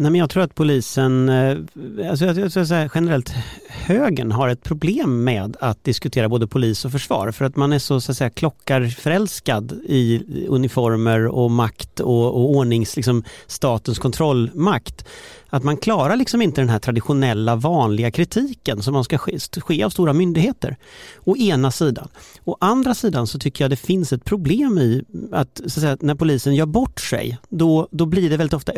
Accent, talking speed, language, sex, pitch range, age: native, 180 wpm, Swedish, male, 125-165 Hz, 40-59